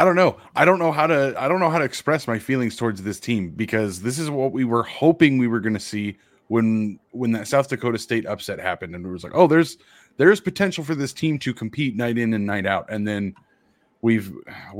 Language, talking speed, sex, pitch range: English, 245 wpm, male, 100-125 Hz